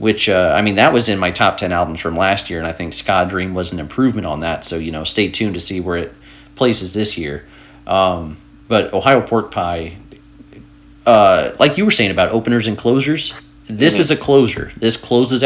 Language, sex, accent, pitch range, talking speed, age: English, male, American, 95-120 Hz, 215 wpm, 30-49